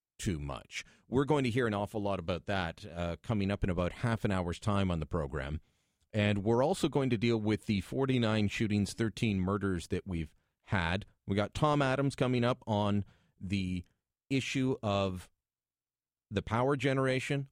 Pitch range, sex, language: 90-120 Hz, male, English